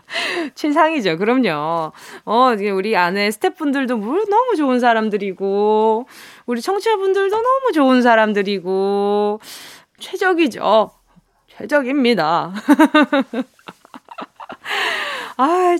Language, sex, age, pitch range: Korean, female, 20-39, 200-325 Hz